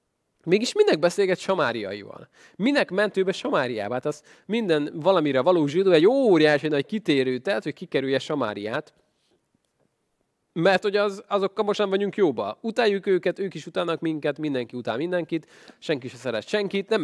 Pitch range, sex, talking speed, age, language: 125-175 Hz, male, 150 wpm, 20-39, Hungarian